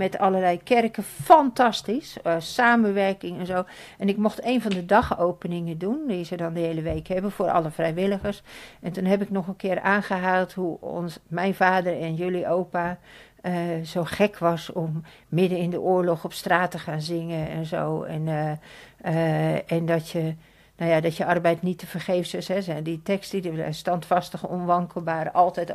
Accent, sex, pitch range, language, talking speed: Dutch, female, 170-205 Hz, Dutch, 185 wpm